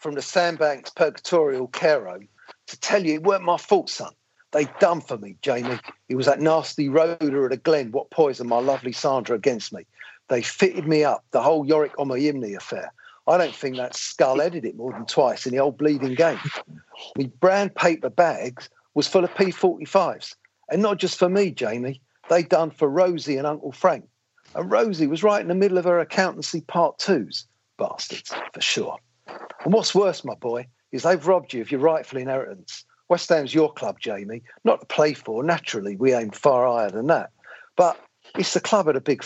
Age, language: 50-69, English